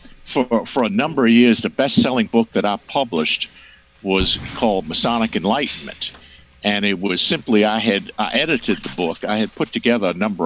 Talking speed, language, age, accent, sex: 185 wpm, English, 50-69, American, male